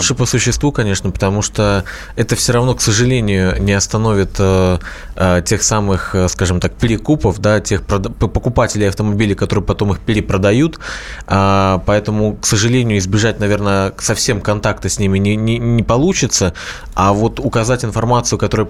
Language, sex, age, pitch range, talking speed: Russian, male, 20-39, 100-120 Hz, 135 wpm